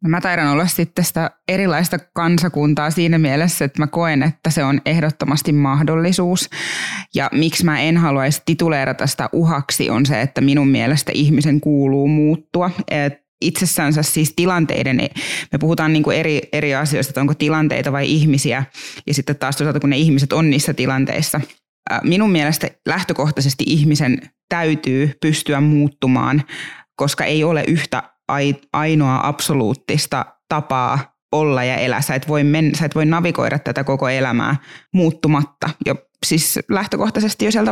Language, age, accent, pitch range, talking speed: Finnish, 20-39, native, 140-160 Hz, 140 wpm